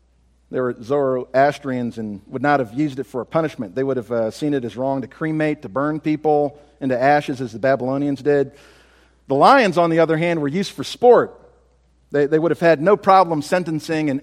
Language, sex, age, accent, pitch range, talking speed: English, male, 50-69, American, 135-170 Hz, 210 wpm